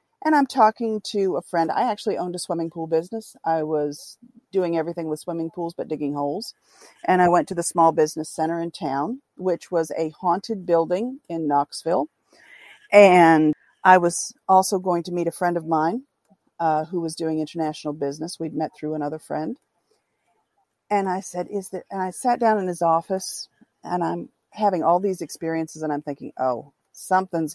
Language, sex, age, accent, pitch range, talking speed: English, female, 50-69, American, 160-205 Hz, 185 wpm